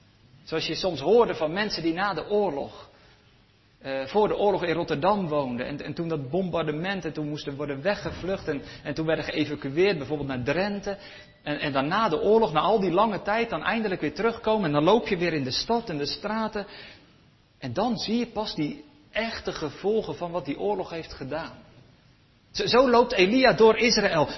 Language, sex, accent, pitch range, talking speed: Dutch, male, Dutch, 140-200 Hz, 200 wpm